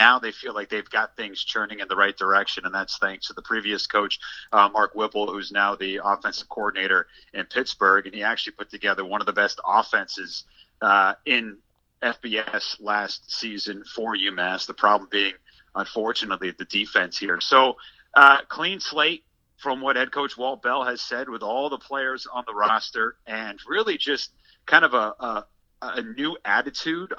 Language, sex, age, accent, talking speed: English, male, 40-59, American, 180 wpm